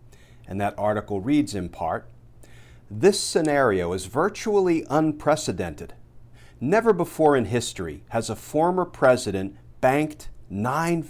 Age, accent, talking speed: 50-69, American, 115 wpm